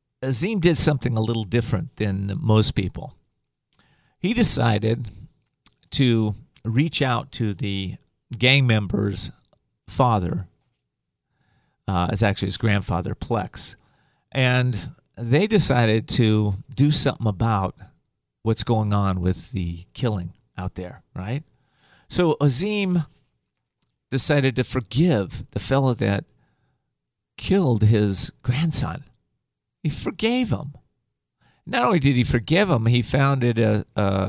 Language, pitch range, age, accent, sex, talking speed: English, 100-135 Hz, 40-59, American, male, 115 wpm